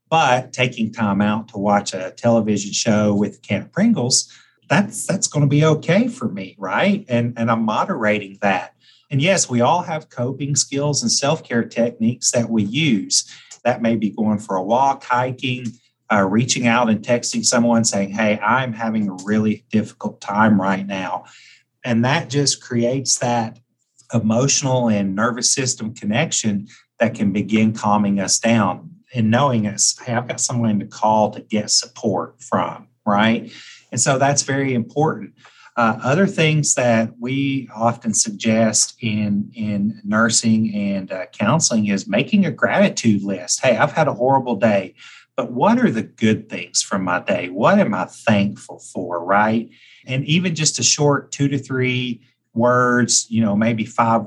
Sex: male